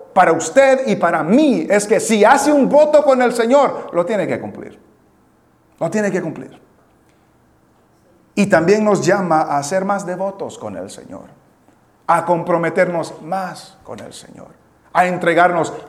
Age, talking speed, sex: 40-59, 155 wpm, male